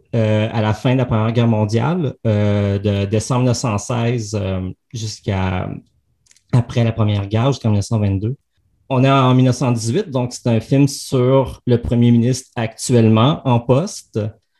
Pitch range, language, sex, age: 110-130 Hz, French, male, 30-49